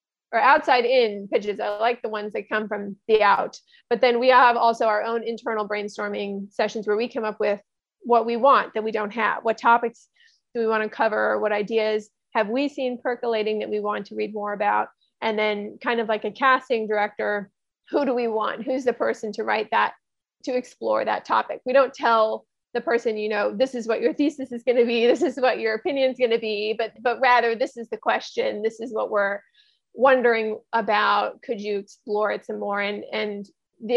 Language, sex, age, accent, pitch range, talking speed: English, female, 30-49, American, 210-245 Hz, 215 wpm